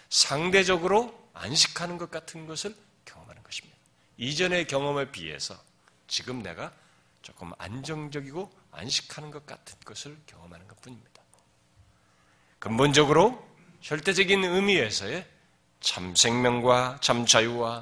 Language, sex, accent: Korean, male, native